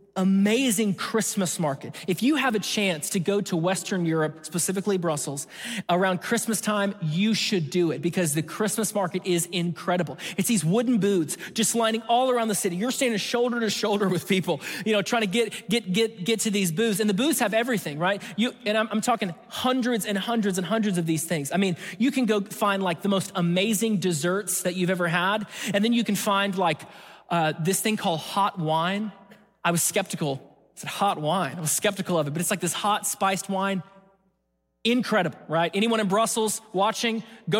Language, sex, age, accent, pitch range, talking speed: English, male, 30-49, American, 180-225 Hz, 205 wpm